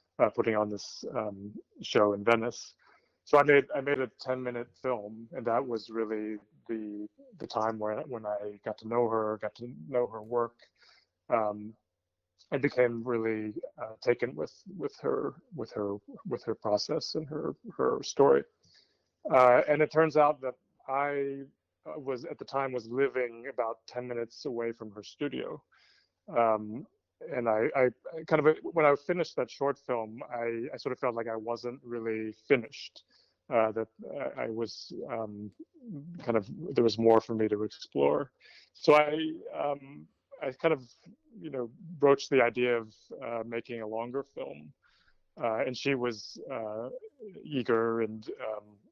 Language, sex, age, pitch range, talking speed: English, male, 30-49, 110-135 Hz, 165 wpm